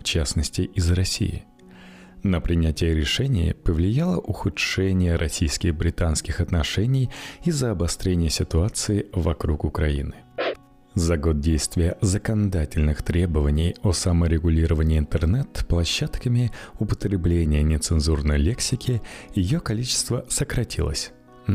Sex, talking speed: male, 90 wpm